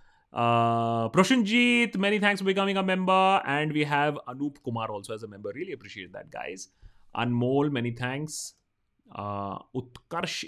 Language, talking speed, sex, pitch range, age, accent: Hindi, 155 wpm, male, 120-190 Hz, 30-49, native